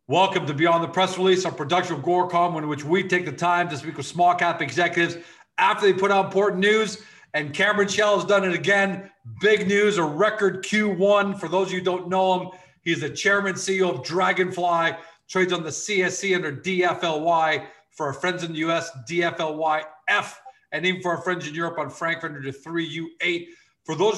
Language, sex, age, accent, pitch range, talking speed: English, male, 40-59, American, 155-185 Hz, 200 wpm